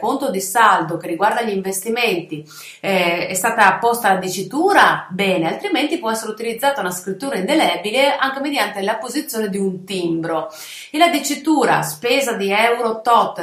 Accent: native